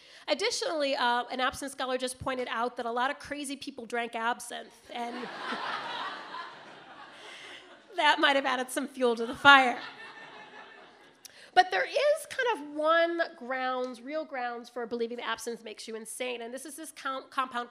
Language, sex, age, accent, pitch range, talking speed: English, female, 30-49, American, 235-285 Hz, 165 wpm